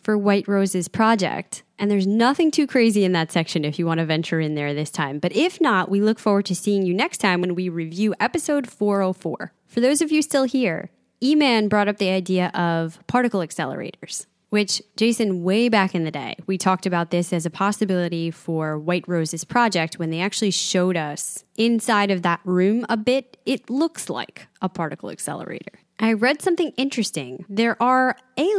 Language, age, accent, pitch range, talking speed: English, 20-39, American, 170-220 Hz, 195 wpm